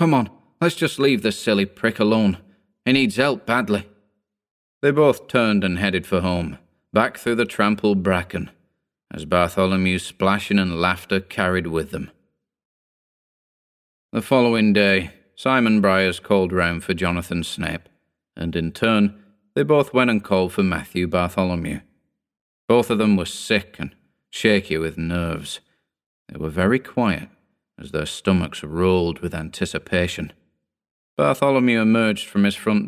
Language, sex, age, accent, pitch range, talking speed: English, male, 30-49, British, 90-105 Hz, 140 wpm